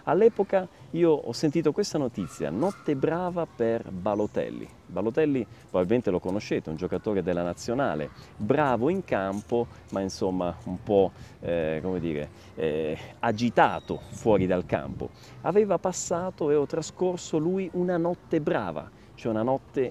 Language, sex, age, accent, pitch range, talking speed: Italian, male, 40-59, native, 110-170 Hz, 140 wpm